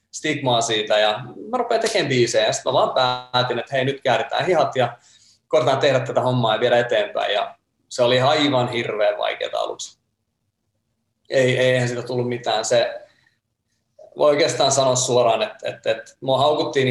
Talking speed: 165 wpm